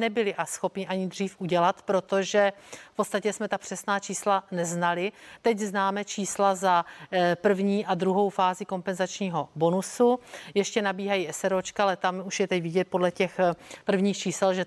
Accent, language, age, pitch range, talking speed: native, Czech, 40-59, 185-215 Hz, 155 wpm